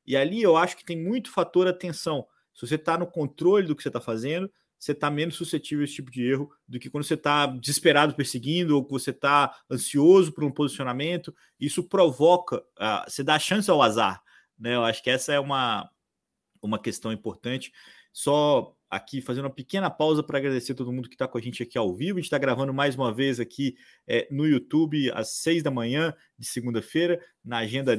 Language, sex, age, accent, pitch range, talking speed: Portuguese, male, 30-49, Brazilian, 125-155 Hz, 215 wpm